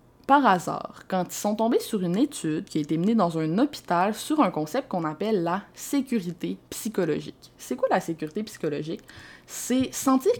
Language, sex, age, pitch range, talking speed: French, female, 20-39, 170-225 Hz, 180 wpm